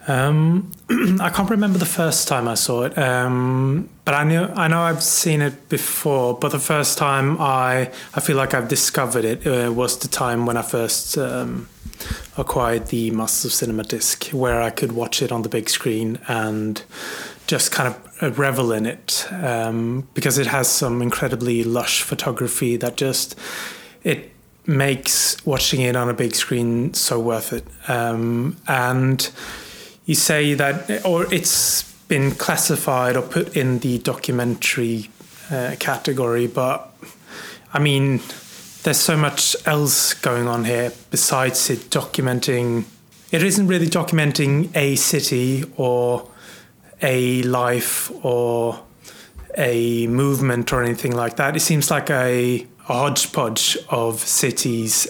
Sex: male